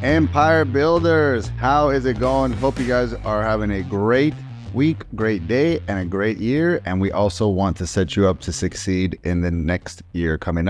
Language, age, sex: English, 30-49, male